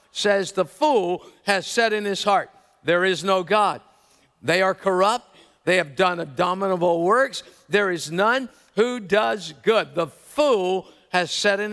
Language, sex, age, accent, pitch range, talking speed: English, male, 50-69, American, 185-220 Hz, 160 wpm